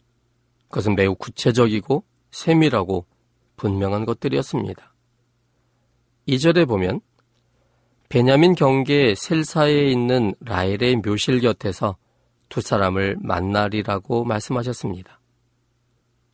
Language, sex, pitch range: Korean, male, 110-135 Hz